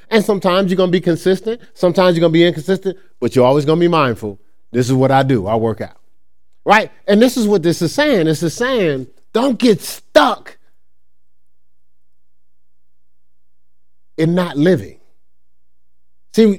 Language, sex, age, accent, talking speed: English, male, 30-49, American, 165 wpm